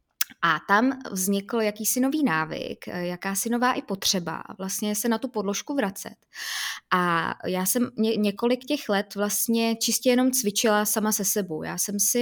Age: 20-39